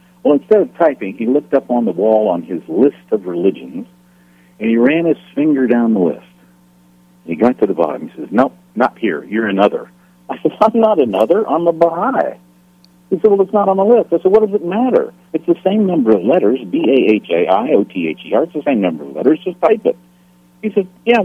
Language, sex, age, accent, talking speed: English, male, 60-79, American, 215 wpm